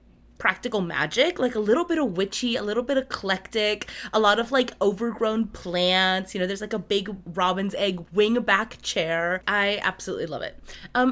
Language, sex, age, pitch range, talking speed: English, female, 20-39, 185-250 Hz, 185 wpm